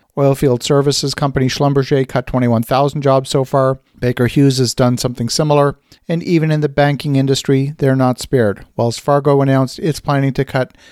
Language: English